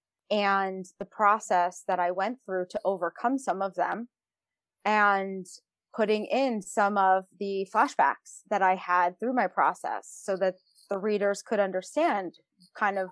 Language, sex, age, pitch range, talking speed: English, female, 20-39, 185-220 Hz, 150 wpm